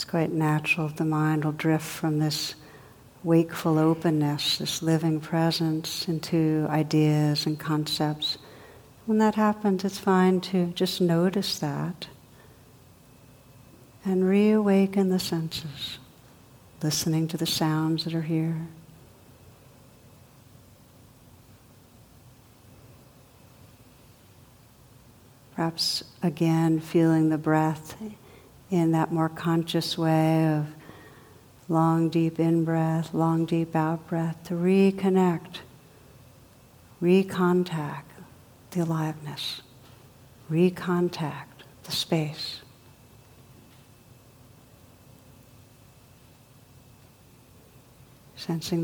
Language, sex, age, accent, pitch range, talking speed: English, female, 60-79, American, 130-165 Hz, 80 wpm